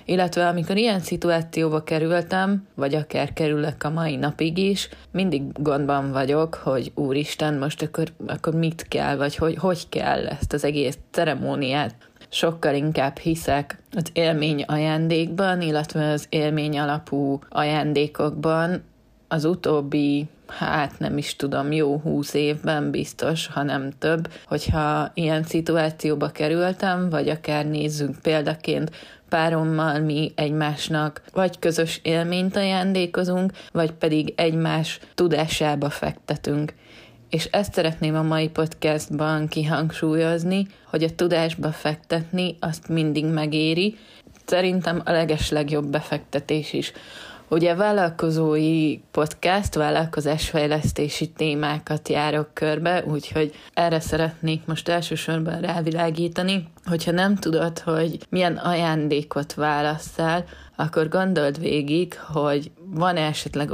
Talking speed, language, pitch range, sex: 110 wpm, Hungarian, 150-165 Hz, female